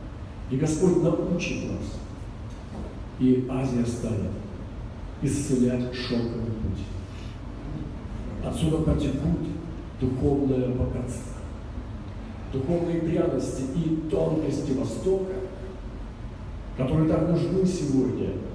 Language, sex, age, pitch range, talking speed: Russian, male, 40-59, 105-155 Hz, 75 wpm